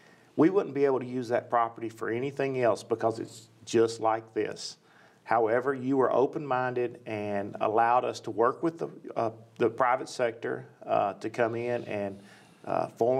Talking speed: 175 wpm